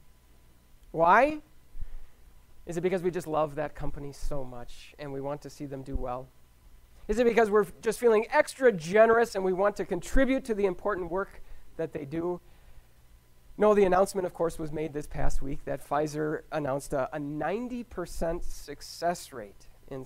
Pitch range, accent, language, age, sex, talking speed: 130-180 Hz, American, English, 40-59, male, 170 wpm